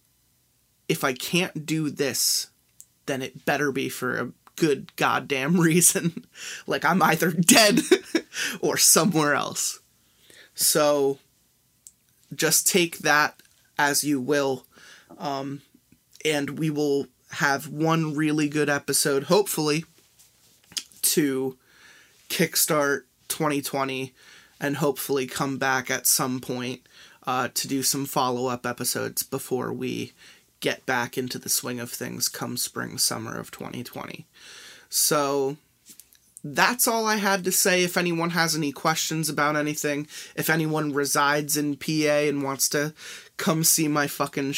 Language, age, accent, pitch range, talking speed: English, 20-39, American, 135-160 Hz, 125 wpm